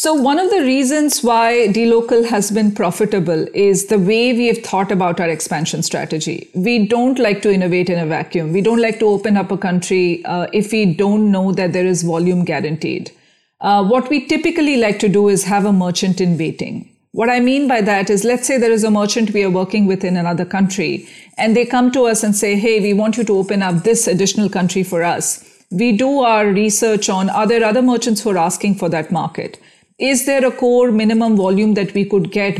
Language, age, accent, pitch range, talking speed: English, 50-69, Indian, 185-230 Hz, 225 wpm